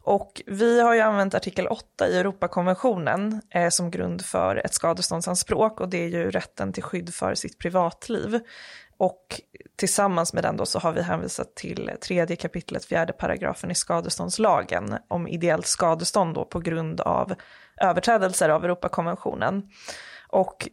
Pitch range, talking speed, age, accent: 170-200 Hz, 150 wpm, 20-39, native